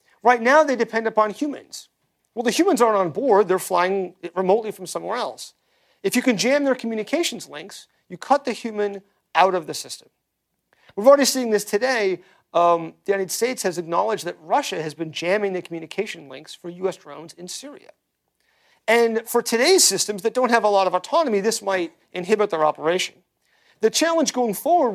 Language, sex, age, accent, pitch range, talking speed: English, male, 40-59, American, 185-255 Hz, 185 wpm